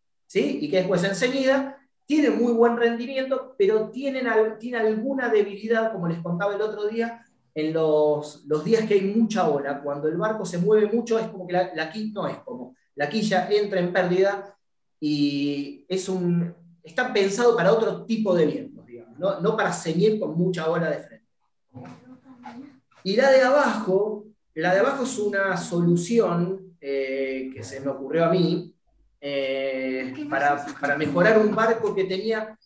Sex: male